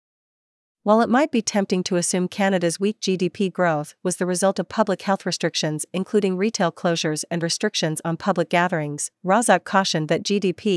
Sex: female